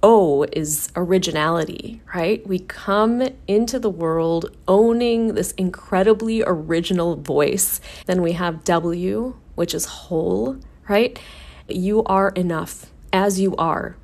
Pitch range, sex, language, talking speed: 160-205 Hz, female, English, 120 wpm